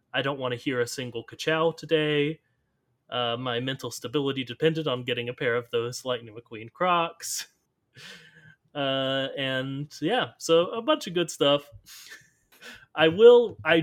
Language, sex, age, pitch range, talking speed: English, male, 30-49, 130-165 Hz, 150 wpm